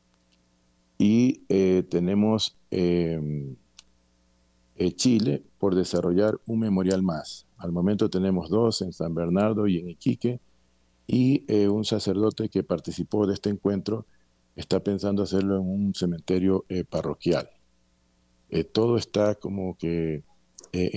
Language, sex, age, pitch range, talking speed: Spanish, male, 50-69, 80-100 Hz, 125 wpm